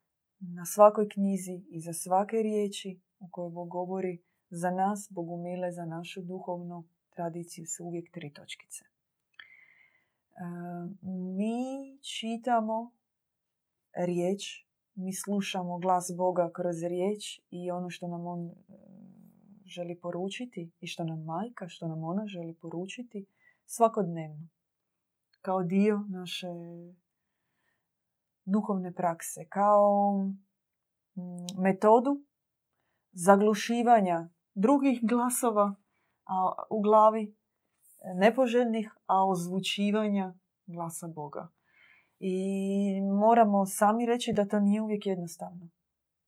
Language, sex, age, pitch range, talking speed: Croatian, female, 20-39, 175-205 Hz, 95 wpm